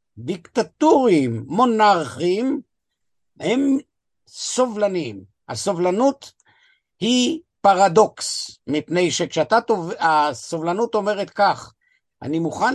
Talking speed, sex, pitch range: 65 wpm, male, 155-230 Hz